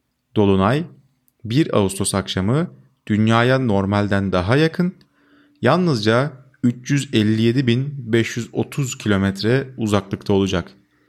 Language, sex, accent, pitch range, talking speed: Turkish, male, native, 105-140 Hz, 70 wpm